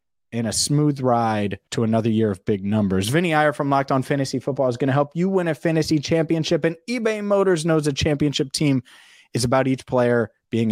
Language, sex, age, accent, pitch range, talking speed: English, male, 30-49, American, 125-165 Hz, 215 wpm